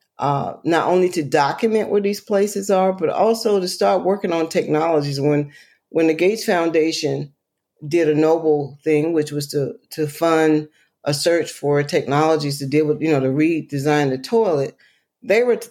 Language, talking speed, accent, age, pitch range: English, 170 wpm, American, 40-59, 150-180 Hz